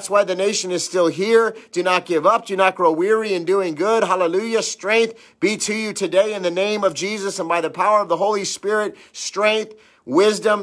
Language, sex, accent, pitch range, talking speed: English, male, American, 175-205 Hz, 220 wpm